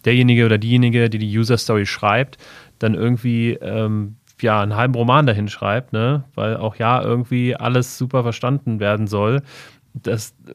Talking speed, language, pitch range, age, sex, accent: 155 wpm, German, 110-130 Hz, 30-49, male, German